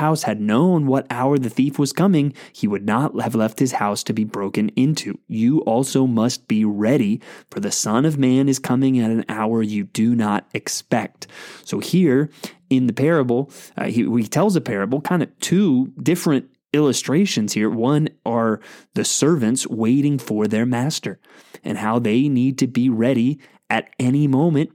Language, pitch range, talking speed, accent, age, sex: English, 115-150 Hz, 180 wpm, American, 20-39, male